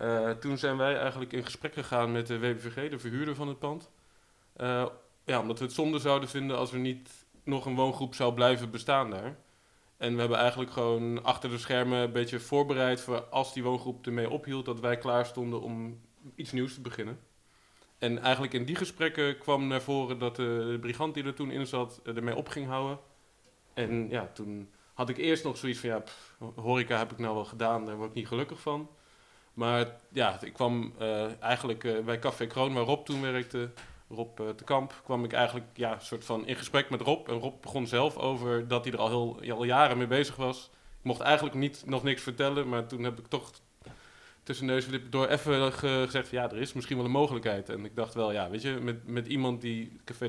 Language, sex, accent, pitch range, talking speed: Dutch, male, Dutch, 115-135 Hz, 220 wpm